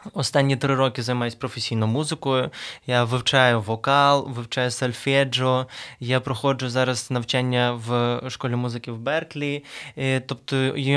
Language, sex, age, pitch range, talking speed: Ukrainian, male, 20-39, 130-145 Hz, 120 wpm